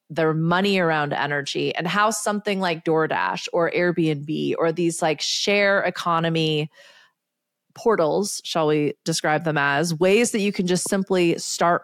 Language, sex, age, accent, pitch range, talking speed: English, female, 30-49, American, 155-195 Hz, 145 wpm